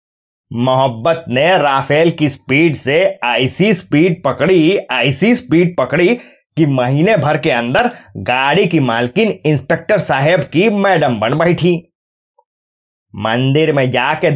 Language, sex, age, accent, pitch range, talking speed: Hindi, male, 30-49, native, 130-180 Hz, 120 wpm